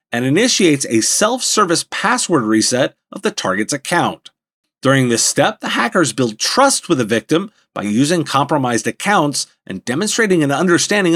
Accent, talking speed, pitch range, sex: American, 150 wpm, 130-205 Hz, male